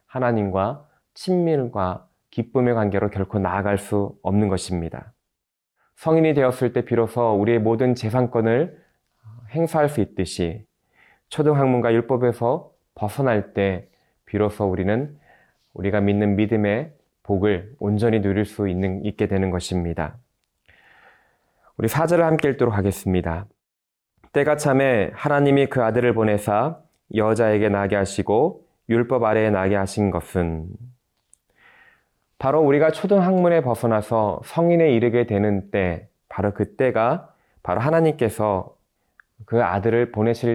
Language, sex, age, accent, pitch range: Korean, male, 20-39, native, 100-125 Hz